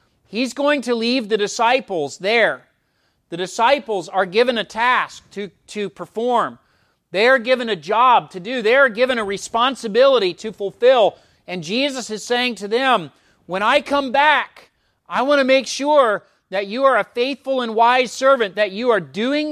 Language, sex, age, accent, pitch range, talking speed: English, male, 30-49, American, 195-260 Hz, 175 wpm